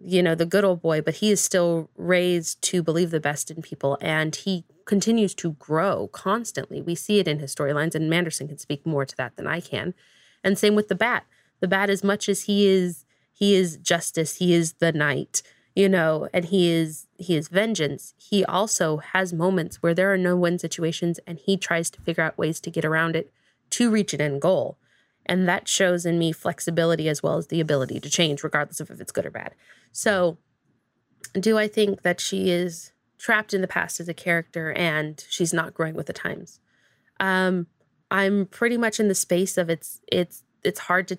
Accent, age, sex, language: American, 20-39, female, English